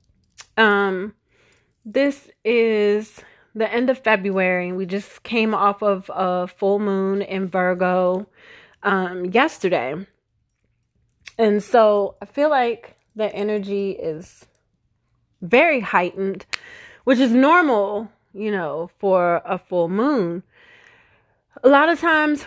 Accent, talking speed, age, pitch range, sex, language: American, 110 wpm, 30-49, 185-245 Hz, female, English